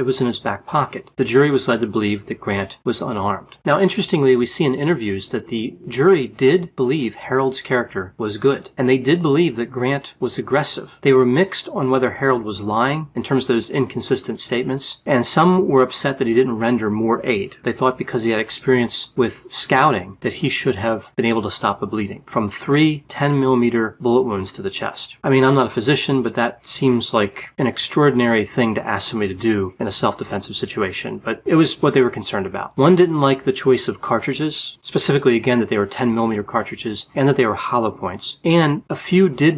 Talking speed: 220 wpm